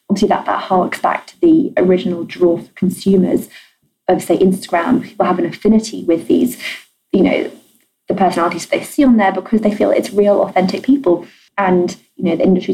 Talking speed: 190 wpm